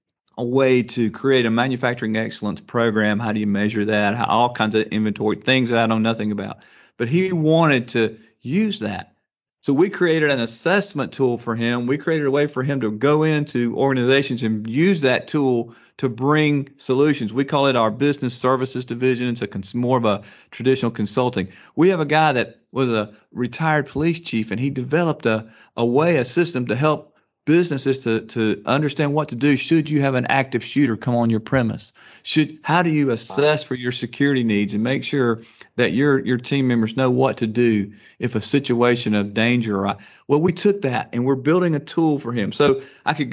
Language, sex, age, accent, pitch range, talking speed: English, male, 40-59, American, 110-140 Hz, 200 wpm